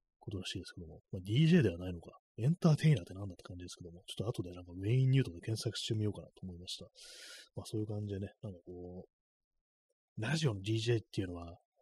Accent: native